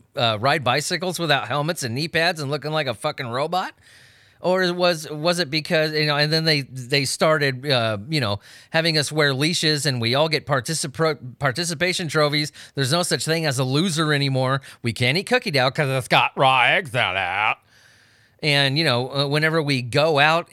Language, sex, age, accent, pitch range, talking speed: English, male, 30-49, American, 115-155 Hz, 195 wpm